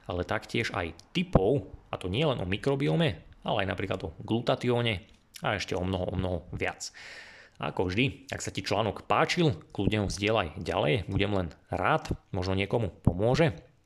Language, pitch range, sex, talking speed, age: Slovak, 95-120 Hz, male, 165 wpm, 30-49